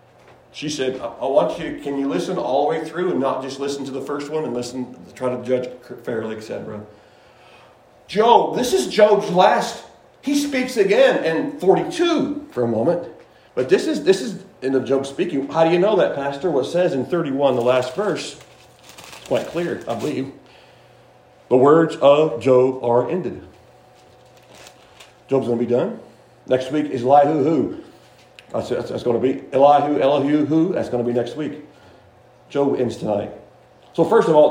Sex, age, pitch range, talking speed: male, 40-59, 125-155 Hz, 185 wpm